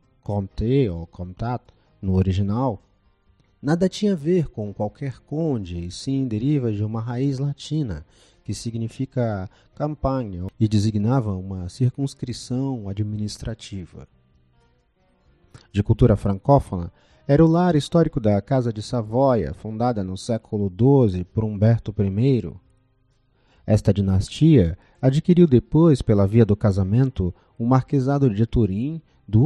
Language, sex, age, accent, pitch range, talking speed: Portuguese, male, 40-59, Brazilian, 100-130 Hz, 120 wpm